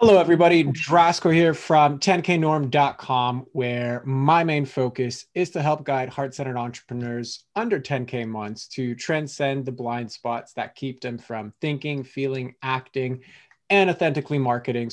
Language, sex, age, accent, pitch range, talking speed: English, male, 20-39, American, 120-150 Hz, 135 wpm